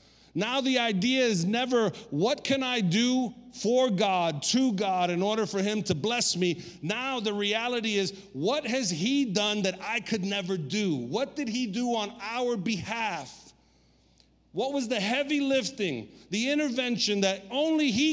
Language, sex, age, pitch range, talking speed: English, male, 50-69, 145-210 Hz, 165 wpm